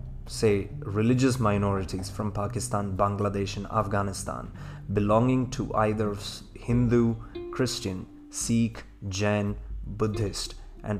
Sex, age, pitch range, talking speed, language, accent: male, 20-39, 95-110 Hz, 95 wpm, English, Indian